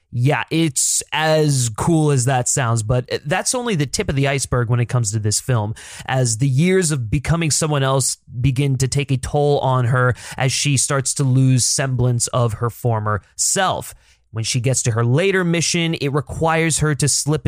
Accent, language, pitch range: American, English, 120-145 Hz